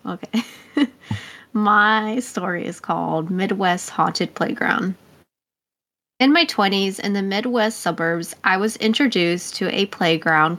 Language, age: English, 20-39